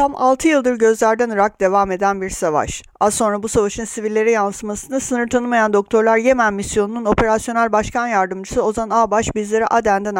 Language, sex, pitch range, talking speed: Turkish, female, 220-265 Hz, 160 wpm